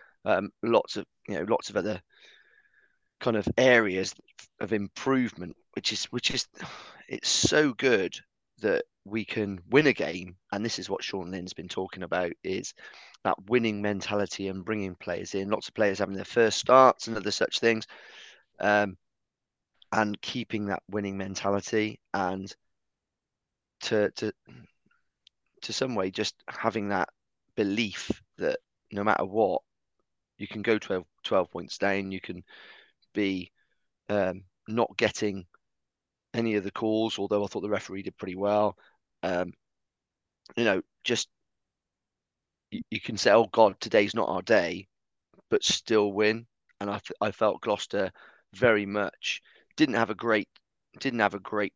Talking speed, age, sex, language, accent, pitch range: 150 wpm, 30-49, male, English, British, 95-115 Hz